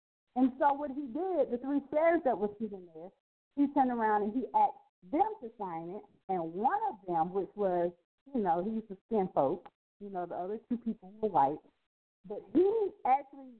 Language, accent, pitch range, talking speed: English, American, 175-260 Hz, 205 wpm